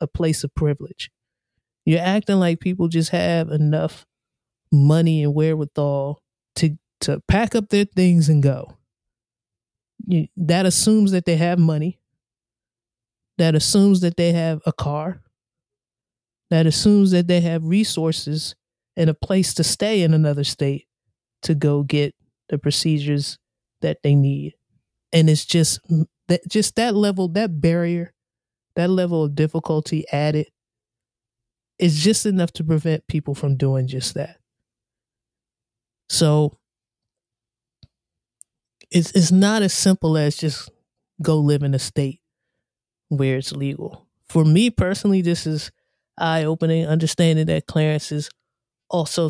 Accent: American